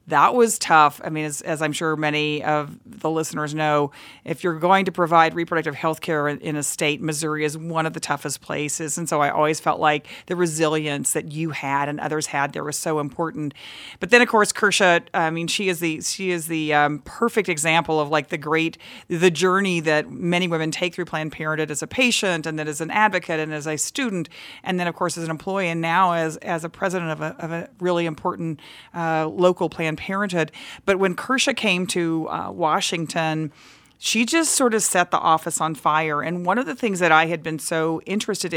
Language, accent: English, American